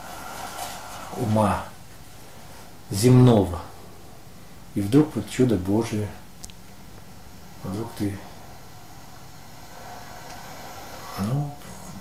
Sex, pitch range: male, 105-135 Hz